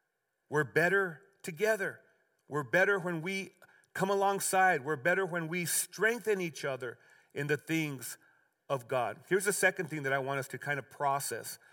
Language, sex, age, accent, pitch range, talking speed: English, male, 40-59, American, 145-180 Hz, 170 wpm